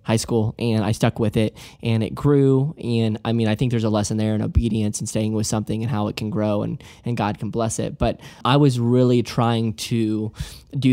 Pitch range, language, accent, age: 110-120 Hz, English, American, 10-29